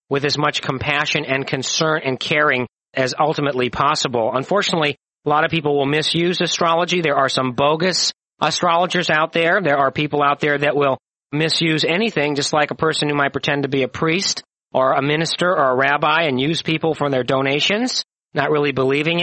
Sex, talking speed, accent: male, 190 wpm, American